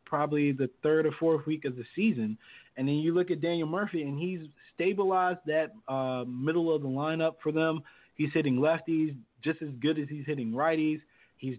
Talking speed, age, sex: 195 wpm, 20-39, male